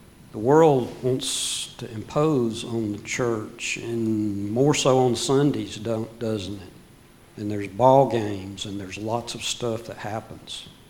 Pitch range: 105-135 Hz